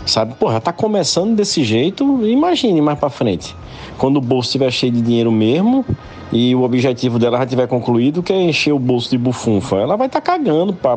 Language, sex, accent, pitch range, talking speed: Portuguese, male, Brazilian, 95-145 Hz, 210 wpm